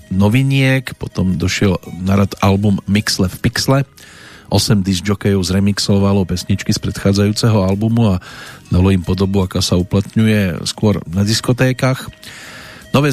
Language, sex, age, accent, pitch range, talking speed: Czech, male, 40-59, native, 95-110 Hz, 125 wpm